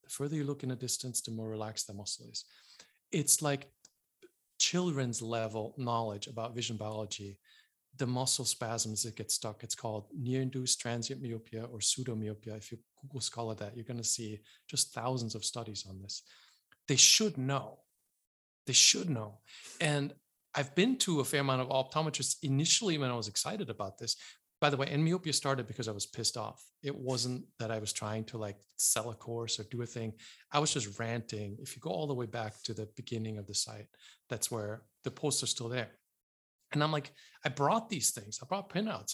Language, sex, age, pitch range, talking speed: English, male, 40-59, 110-150 Hz, 200 wpm